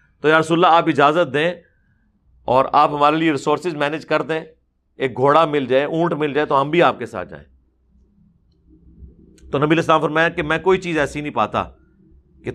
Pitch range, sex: 125-185 Hz, male